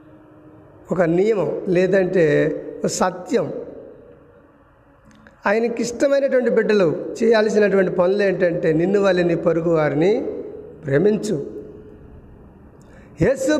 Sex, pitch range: male, 195-285 Hz